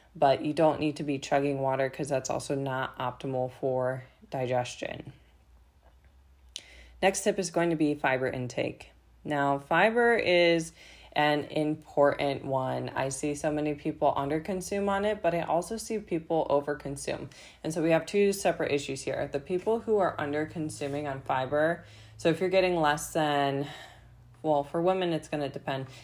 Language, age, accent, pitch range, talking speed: English, 20-39, American, 140-165 Hz, 165 wpm